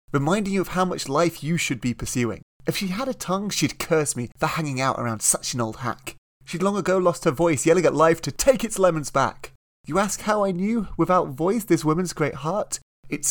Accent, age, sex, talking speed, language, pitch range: British, 30-49, male, 235 wpm, English, 125-180 Hz